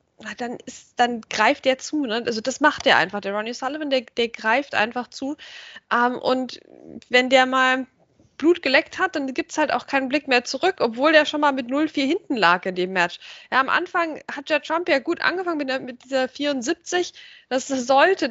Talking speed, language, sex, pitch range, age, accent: 210 wpm, German, female, 255-325 Hz, 20-39, German